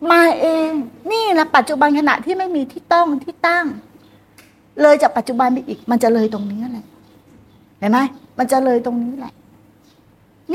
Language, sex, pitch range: Thai, female, 225-280 Hz